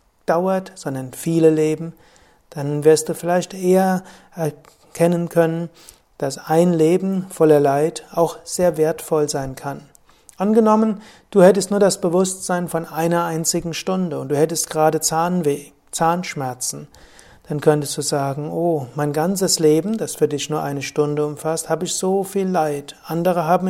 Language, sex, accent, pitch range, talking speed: German, male, German, 150-180 Hz, 145 wpm